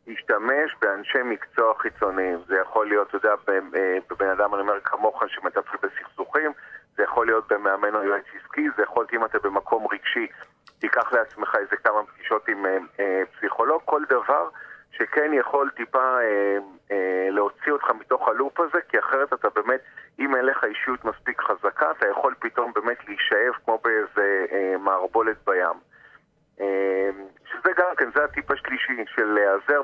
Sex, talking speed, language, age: male, 155 wpm, Hebrew, 40-59